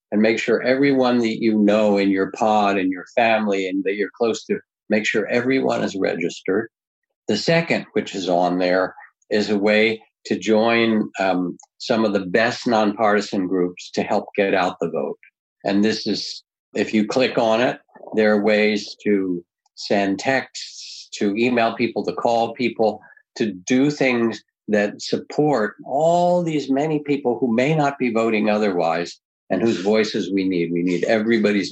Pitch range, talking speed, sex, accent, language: 95-115 Hz, 170 wpm, male, American, English